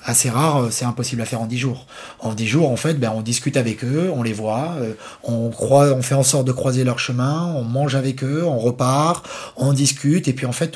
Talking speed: 245 wpm